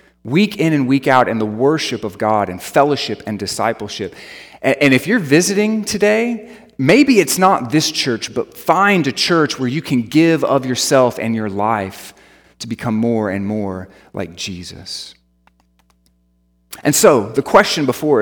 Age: 30-49